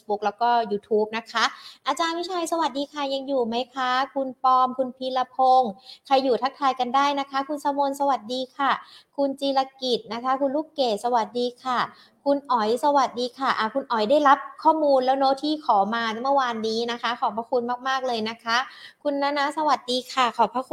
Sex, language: female, Thai